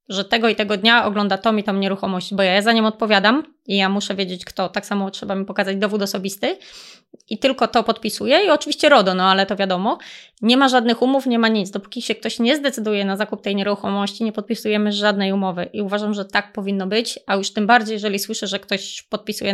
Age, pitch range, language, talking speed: 20-39, 195-225 Hz, Polish, 225 wpm